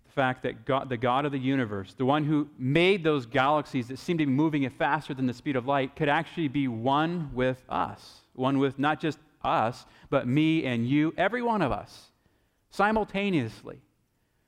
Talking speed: 190 wpm